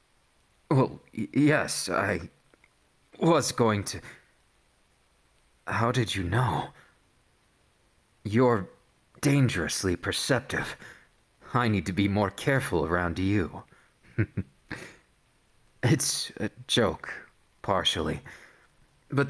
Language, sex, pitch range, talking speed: English, male, 90-130 Hz, 80 wpm